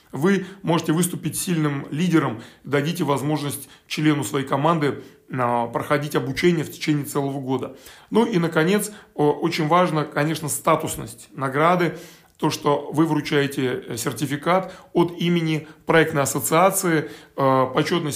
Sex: male